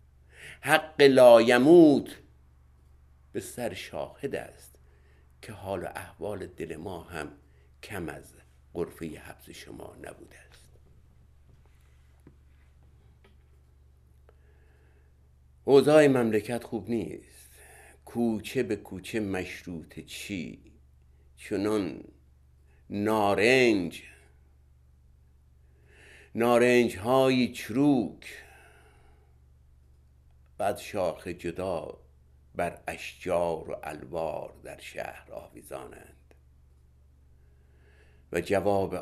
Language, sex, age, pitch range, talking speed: Persian, male, 60-79, 65-85 Hz, 70 wpm